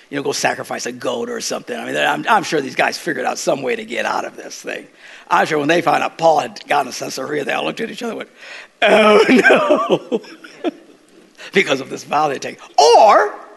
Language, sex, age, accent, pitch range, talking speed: English, male, 50-69, American, 155-260 Hz, 235 wpm